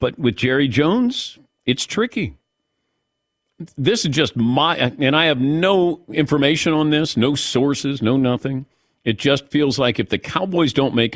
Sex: male